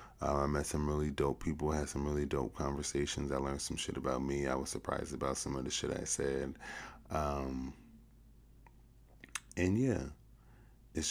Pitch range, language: 70-85 Hz, English